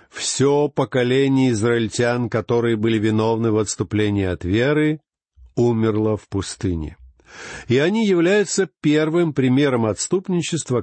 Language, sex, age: Russian, male, 50-69